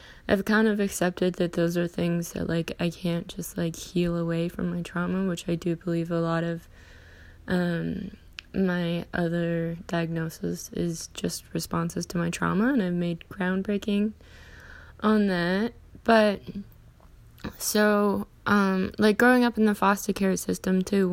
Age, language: 10-29, English